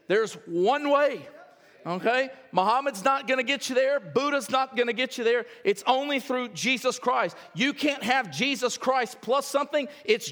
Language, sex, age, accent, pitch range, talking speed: English, male, 50-69, American, 205-265 Hz, 180 wpm